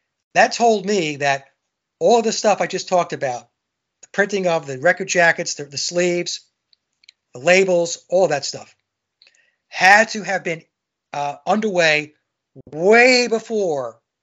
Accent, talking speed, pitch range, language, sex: American, 140 wpm, 150-205 Hz, English, male